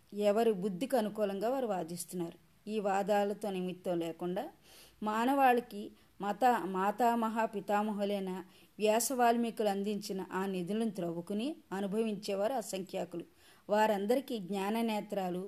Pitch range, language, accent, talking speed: 190-230 Hz, Telugu, native, 85 wpm